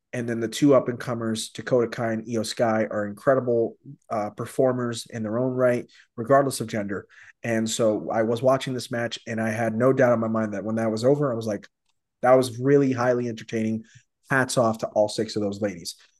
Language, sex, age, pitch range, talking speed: English, male, 30-49, 115-140 Hz, 210 wpm